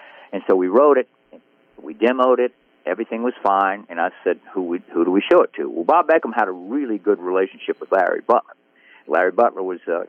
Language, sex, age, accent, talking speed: English, male, 50-69, American, 220 wpm